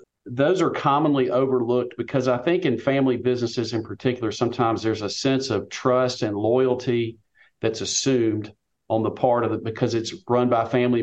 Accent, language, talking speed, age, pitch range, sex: American, English, 175 wpm, 40-59, 105-130 Hz, male